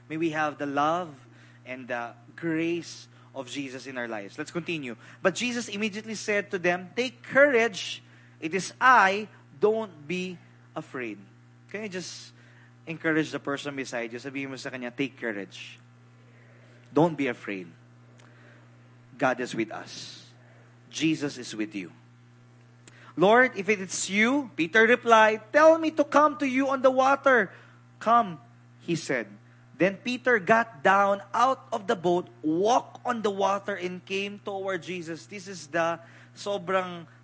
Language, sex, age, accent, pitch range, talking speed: English, male, 20-39, Filipino, 115-195 Hz, 145 wpm